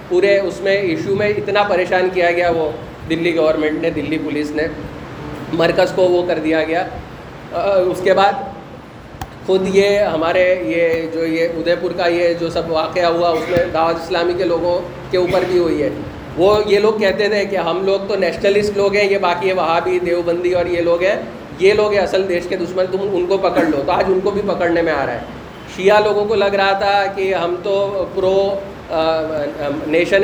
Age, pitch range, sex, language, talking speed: 30-49, 170-200 Hz, male, Urdu, 200 wpm